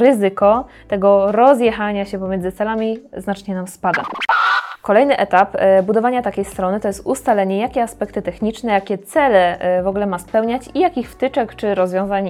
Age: 20-39